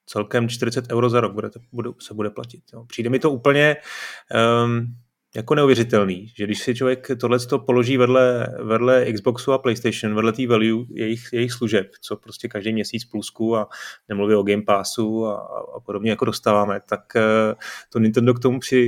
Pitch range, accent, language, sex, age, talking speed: 110-130 Hz, native, Czech, male, 30-49, 170 wpm